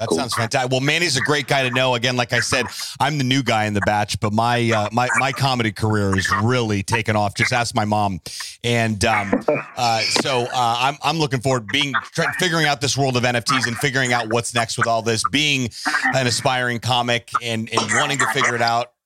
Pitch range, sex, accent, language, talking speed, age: 105-130 Hz, male, American, English, 225 wpm, 30-49